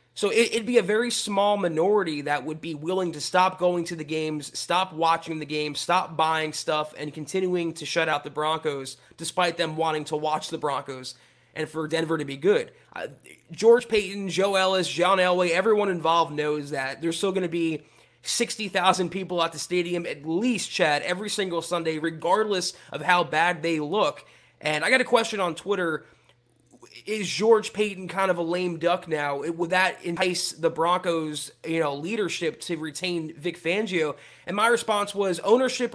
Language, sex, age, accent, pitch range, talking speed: English, male, 20-39, American, 155-190 Hz, 180 wpm